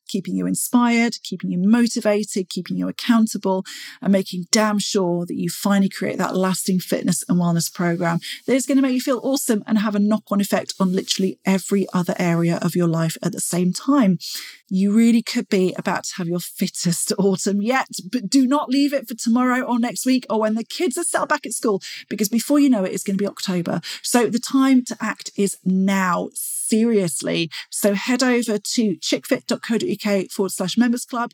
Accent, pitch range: British, 190-240 Hz